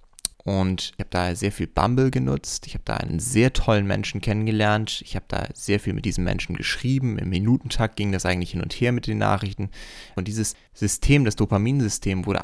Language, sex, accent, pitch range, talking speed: German, male, German, 95-115 Hz, 205 wpm